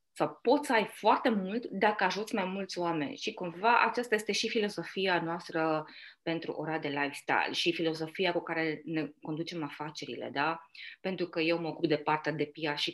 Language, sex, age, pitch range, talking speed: Romanian, female, 20-39, 170-245 Hz, 185 wpm